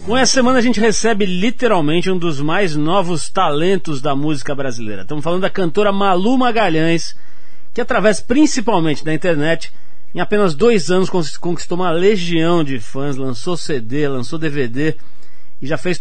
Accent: Brazilian